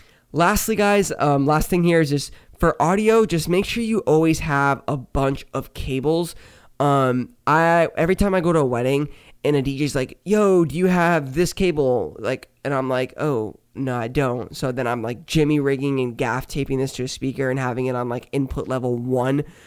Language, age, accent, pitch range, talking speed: English, 20-39, American, 125-155 Hz, 205 wpm